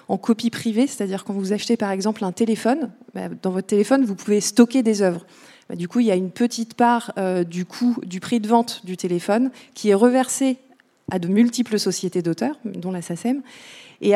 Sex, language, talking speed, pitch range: female, French, 200 wpm, 200-240 Hz